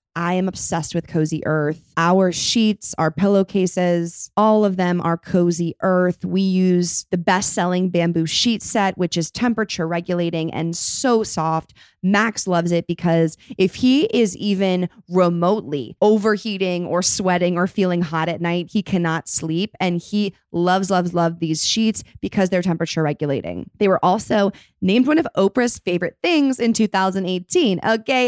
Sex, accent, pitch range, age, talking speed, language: female, American, 175-225 Hz, 20-39, 150 wpm, English